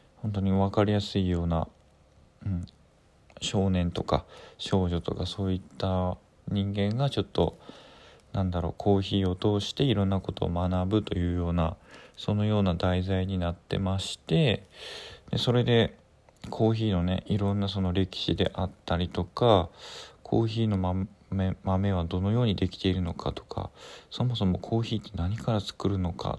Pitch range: 90-105 Hz